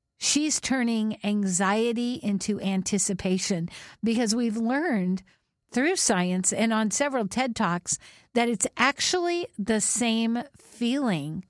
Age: 50-69